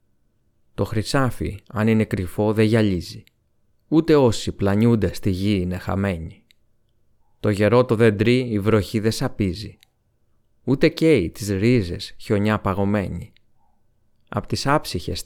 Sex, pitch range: male, 100-120 Hz